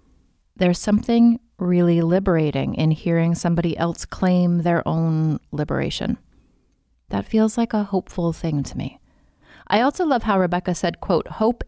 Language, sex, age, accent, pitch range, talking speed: English, female, 30-49, American, 160-185 Hz, 145 wpm